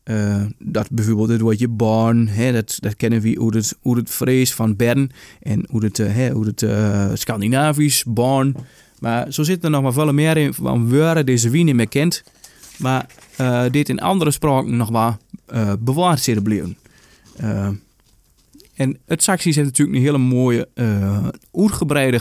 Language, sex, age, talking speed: English, male, 20-39, 175 wpm